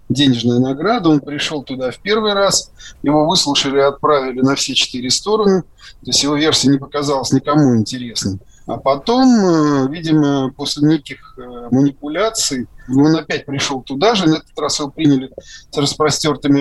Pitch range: 135-170 Hz